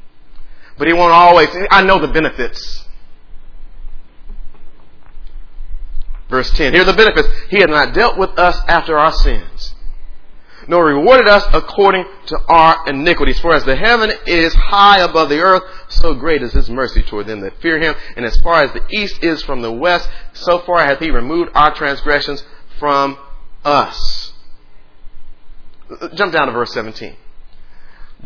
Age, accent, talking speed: 40-59, American, 155 wpm